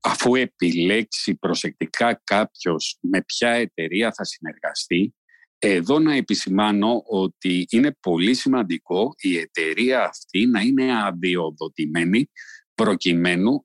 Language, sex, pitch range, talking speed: Greek, male, 95-135 Hz, 100 wpm